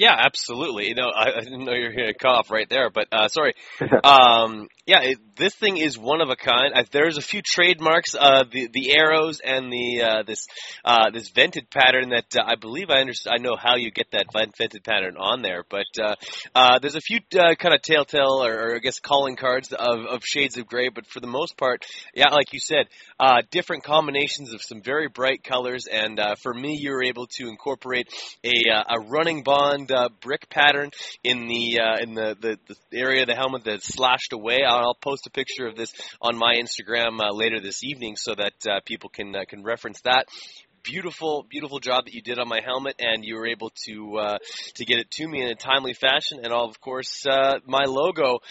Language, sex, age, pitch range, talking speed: English, male, 20-39, 115-140 Hz, 225 wpm